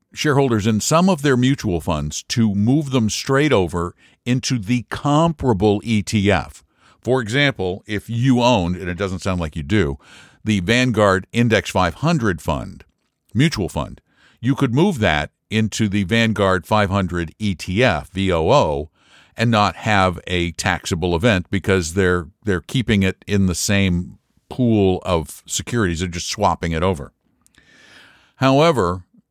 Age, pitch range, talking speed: 60-79, 95-125 Hz, 140 wpm